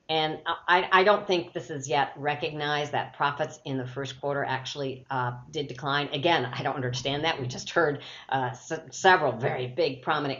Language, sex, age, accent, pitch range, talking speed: English, female, 50-69, American, 135-165 Hz, 185 wpm